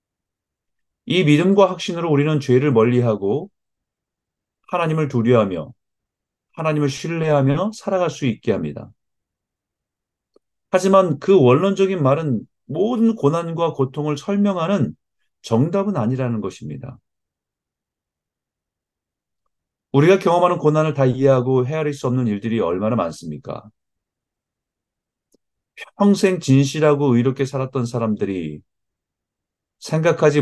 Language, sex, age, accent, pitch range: Korean, male, 40-59, native, 120-165 Hz